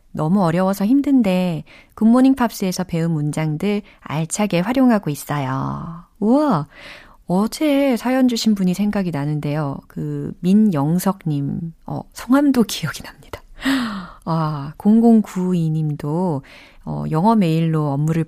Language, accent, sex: Korean, native, female